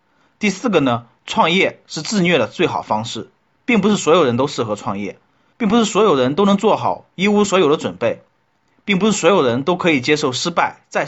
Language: Chinese